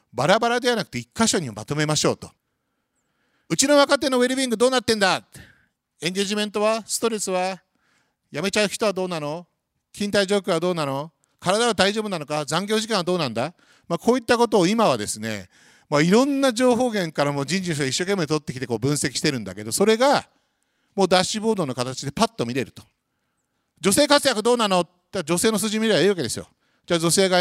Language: Japanese